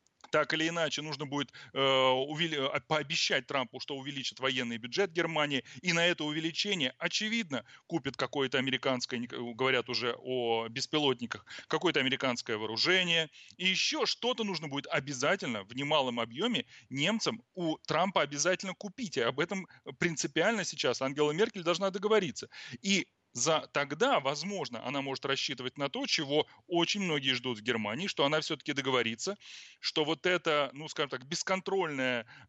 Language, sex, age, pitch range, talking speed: Russian, male, 30-49, 135-180 Hz, 145 wpm